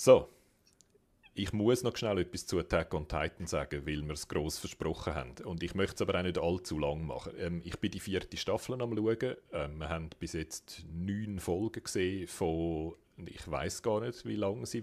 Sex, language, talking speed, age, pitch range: male, German, 205 wpm, 40-59, 80-95 Hz